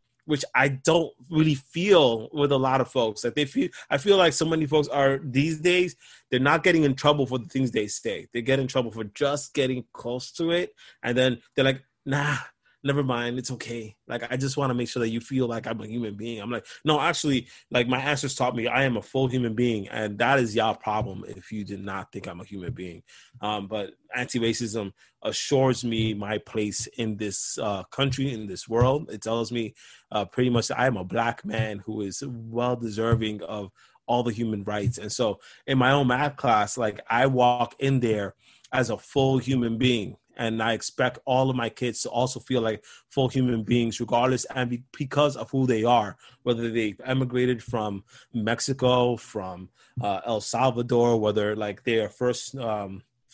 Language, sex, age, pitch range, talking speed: English, male, 20-39, 110-135 Hz, 205 wpm